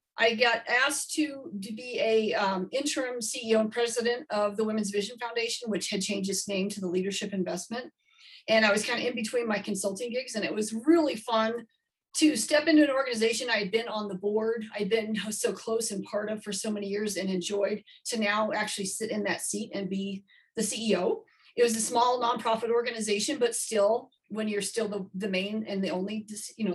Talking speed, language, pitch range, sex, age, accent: 210 wpm, English, 195-235 Hz, female, 40-59, American